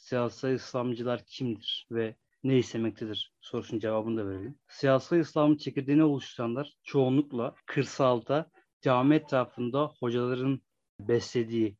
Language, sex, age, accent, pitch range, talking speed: Turkish, male, 30-49, native, 120-150 Hz, 100 wpm